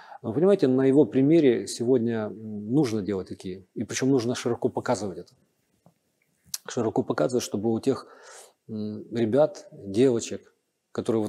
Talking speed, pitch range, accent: 120 wpm, 105-135 Hz, native